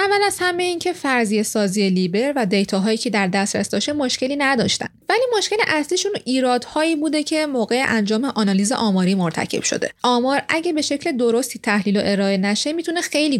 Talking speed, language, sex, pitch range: 175 wpm, Persian, female, 205-280 Hz